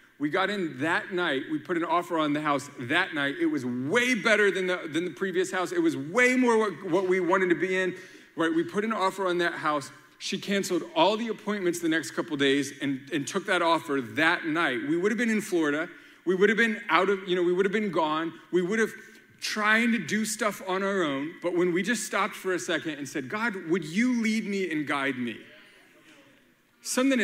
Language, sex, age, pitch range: English, male, 40-59, 160-220 Hz